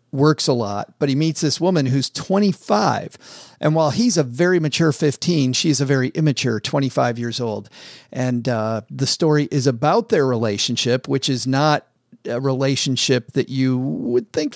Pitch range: 120-160 Hz